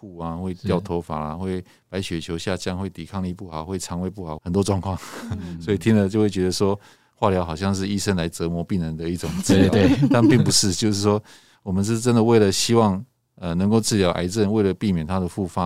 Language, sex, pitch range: Chinese, male, 90-110 Hz